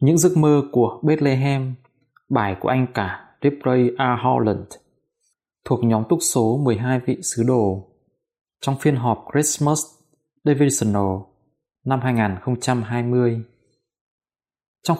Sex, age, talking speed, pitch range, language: male, 20-39, 110 wpm, 110-145 Hz, Vietnamese